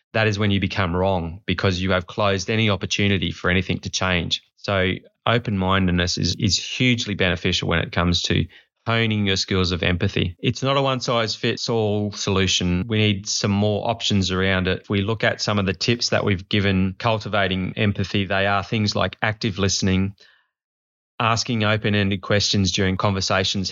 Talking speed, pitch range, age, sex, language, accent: 170 wpm, 95-110 Hz, 20-39, male, English, Australian